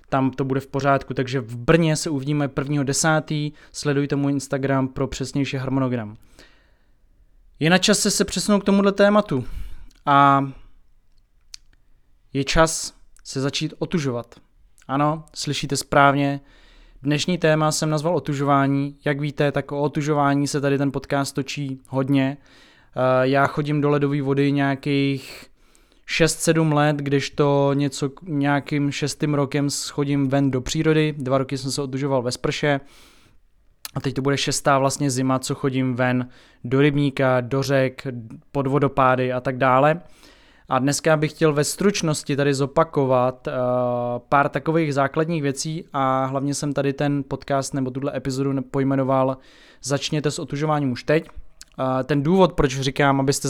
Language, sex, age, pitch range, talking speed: Czech, male, 20-39, 135-150 Hz, 140 wpm